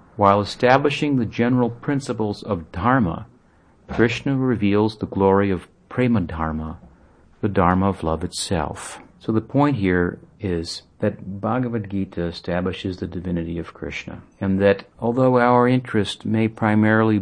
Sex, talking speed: male, 135 wpm